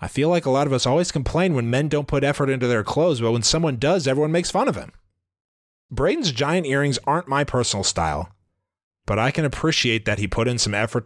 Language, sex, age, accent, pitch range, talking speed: English, male, 30-49, American, 100-135 Hz, 235 wpm